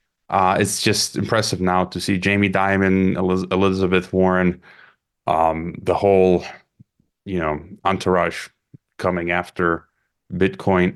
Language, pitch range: English, 95-120 Hz